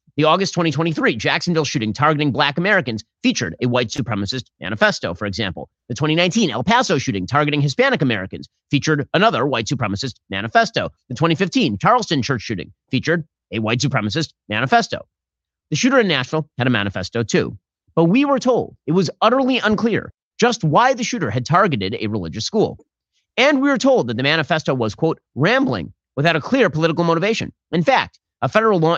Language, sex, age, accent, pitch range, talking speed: English, male, 30-49, American, 125-180 Hz, 170 wpm